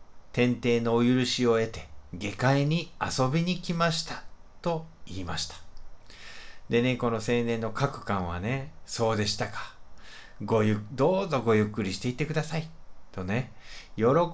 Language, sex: Japanese, male